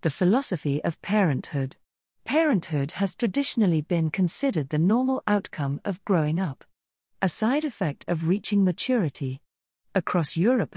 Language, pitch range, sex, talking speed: English, 155-220 Hz, female, 130 wpm